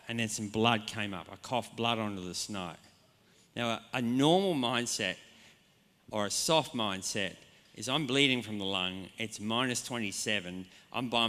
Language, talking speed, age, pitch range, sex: English, 170 wpm, 40-59, 95-120 Hz, male